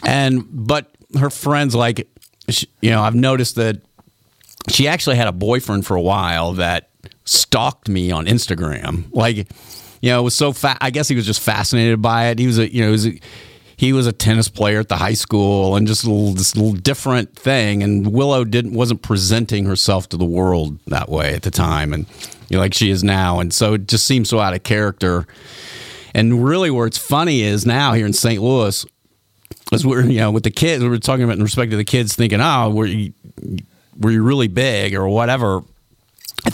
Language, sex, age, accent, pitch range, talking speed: English, male, 40-59, American, 100-120 Hz, 215 wpm